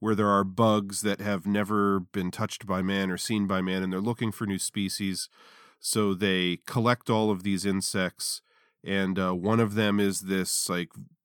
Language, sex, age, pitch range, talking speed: English, male, 40-59, 95-110 Hz, 190 wpm